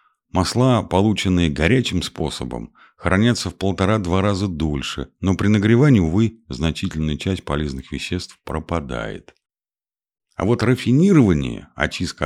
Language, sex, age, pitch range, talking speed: Russian, male, 50-69, 75-100 Hz, 110 wpm